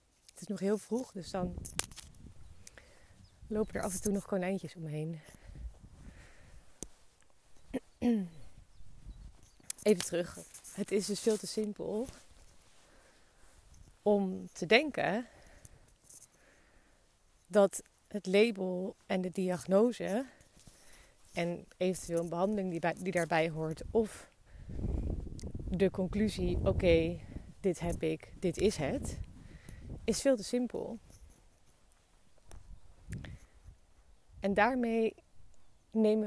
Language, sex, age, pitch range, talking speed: Dutch, female, 30-49, 170-210 Hz, 95 wpm